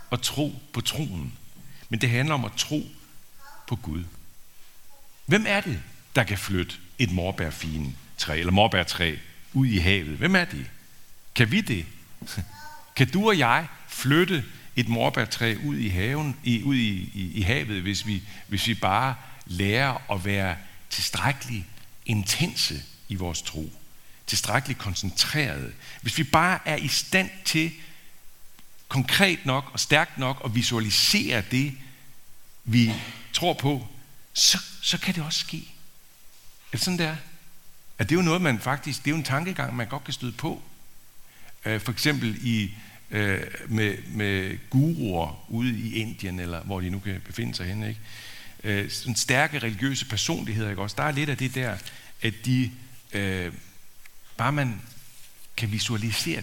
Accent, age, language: native, 60-79, Danish